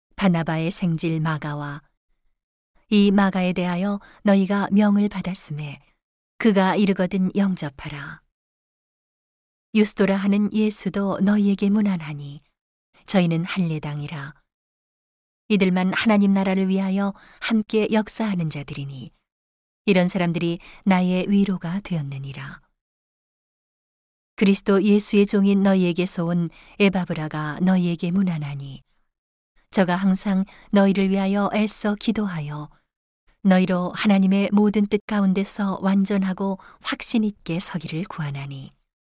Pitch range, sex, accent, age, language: 160-200 Hz, female, native, 40-59, Korean